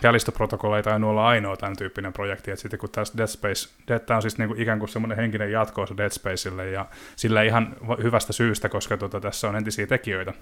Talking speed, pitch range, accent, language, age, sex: 215 wpm, 100-115 Hz, native, Finnish, 20-39, male